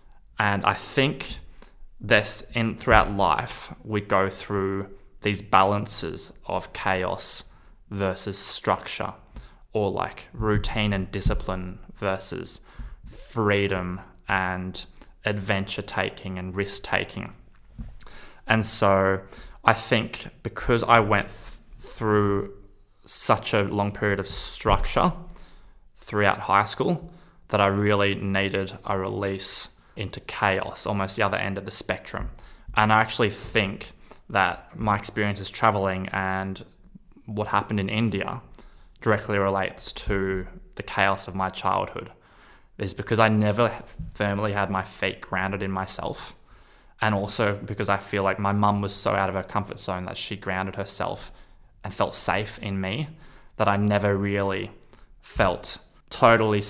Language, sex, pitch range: English, male, 95-105 Hz